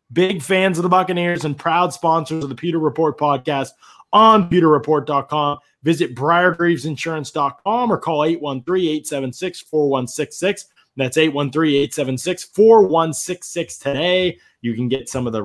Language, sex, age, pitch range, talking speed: English, male, 20-39, 125-170 Hz, 115 wpm